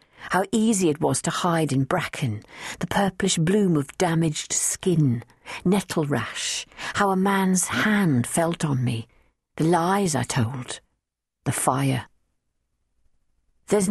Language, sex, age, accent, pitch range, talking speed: English, female, 50-69, British, 125-185 Hz, 130 wpm